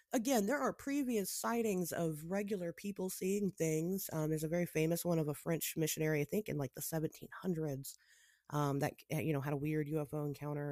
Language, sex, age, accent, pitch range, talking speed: English, female, 30-49, American, 150-195 Hz, 195 wpm